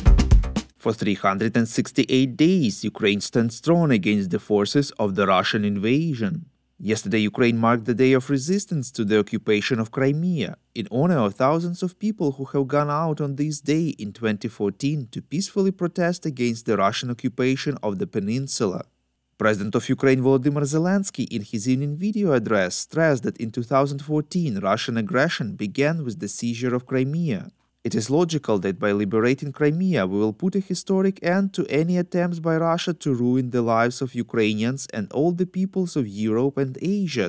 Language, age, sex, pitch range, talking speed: English, 30-49, male, 115-165 Hz, 165 wpm